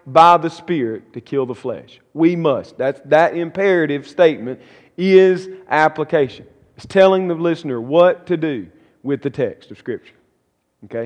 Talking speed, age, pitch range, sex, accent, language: 150 wpm, 40-59, 130-170 Hz, male, American, English